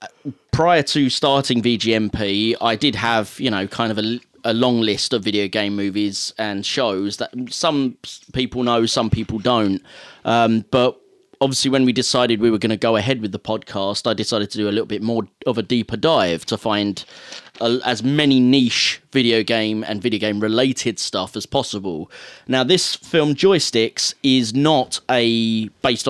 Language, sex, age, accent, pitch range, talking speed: English, male, 30-49, British, 110-130 Hz, 180 wpm